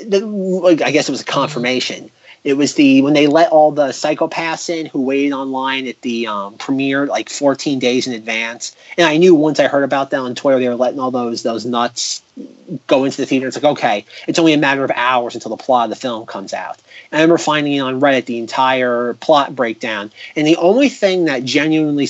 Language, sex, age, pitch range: English, male, 30-49, 125-160 Hz